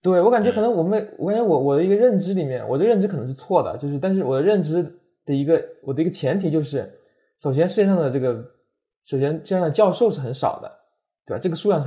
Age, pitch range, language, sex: 20-39, 130-175 Hz, Chinese, male